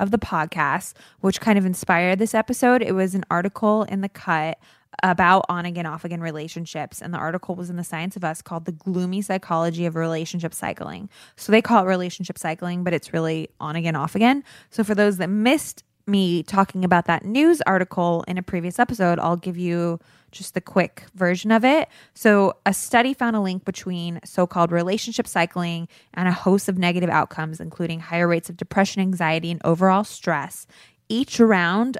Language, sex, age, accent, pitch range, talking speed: English, female, 20-39, American, 170-210 Hz, 185 wpm